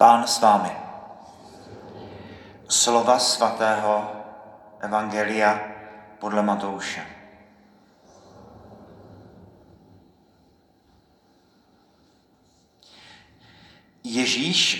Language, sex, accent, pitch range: Czech, male, native, 105-130 Hz